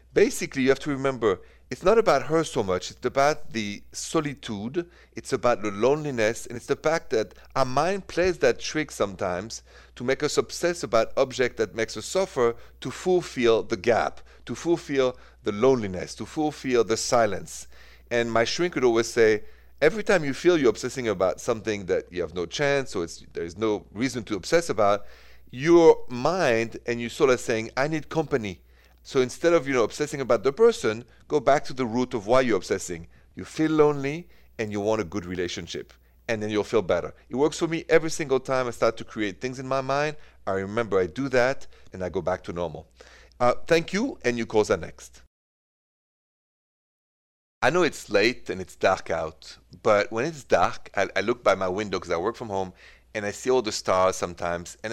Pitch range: 105-150 Hz